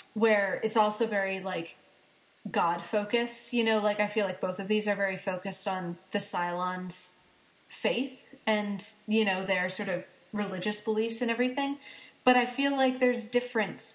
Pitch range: 190-230 Hz